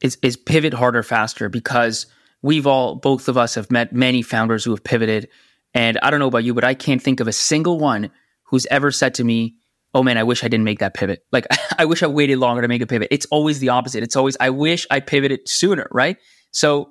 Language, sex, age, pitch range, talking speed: English, male, 20-39, 115-135 Hz, 245 wpm